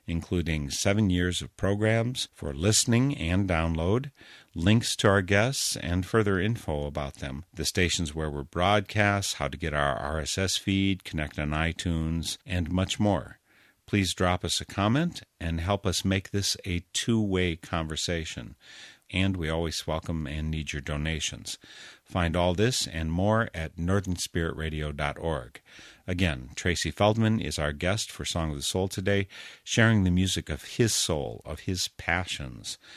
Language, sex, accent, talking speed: English, male, American, 155 wpm